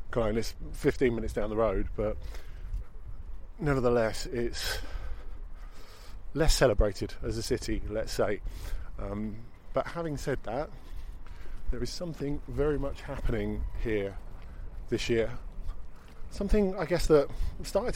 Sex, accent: male, British